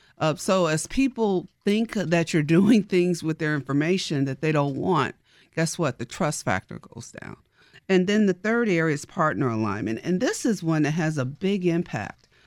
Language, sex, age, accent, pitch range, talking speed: English, female, 50-69, American, 130-170 Hz, 195 wpm